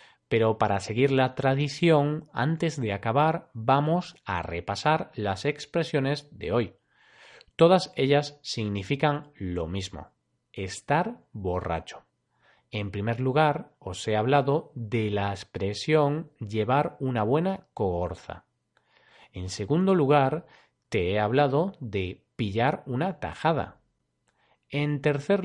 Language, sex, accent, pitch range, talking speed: Spanish, male, Spanish, 105-155 Hz, 110 wpm